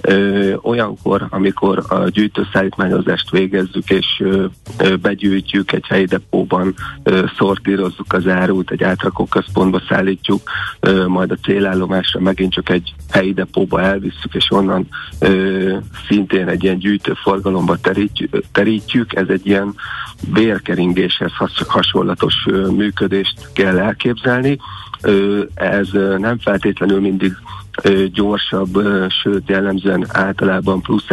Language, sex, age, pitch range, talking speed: Hungarian, male, 50-69, 95-100 Hz, 95 wpm